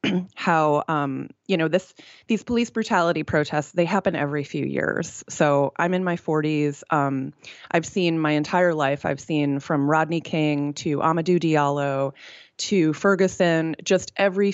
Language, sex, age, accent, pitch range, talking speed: English, female, 20-39, American, 150-185 Hz, 155 wpm